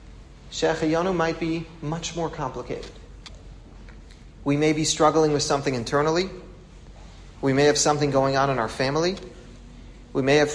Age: 40-59